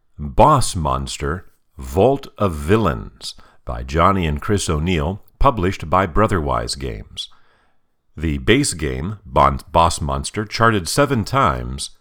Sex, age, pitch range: male, 50-69, 80-110 Hz